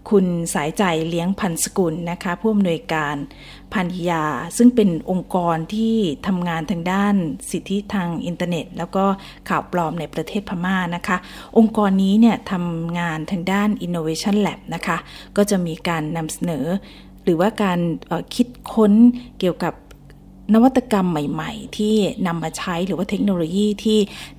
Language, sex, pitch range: Thai, female, 170-210 Hz